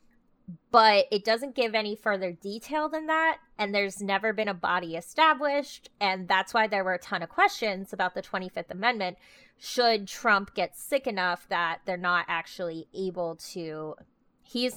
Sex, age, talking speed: female, 20-39, 165 wpm